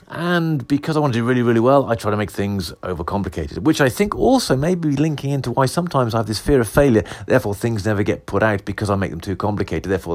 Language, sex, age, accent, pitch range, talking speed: English, male, 40-59, British, 95-135 Hz, 260 wpm